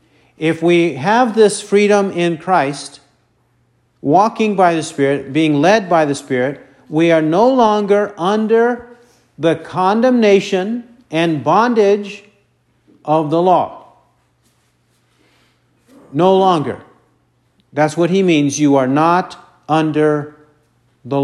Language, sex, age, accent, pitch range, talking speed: English, male, 50-69, American, 150-200 Hz, 110 wpm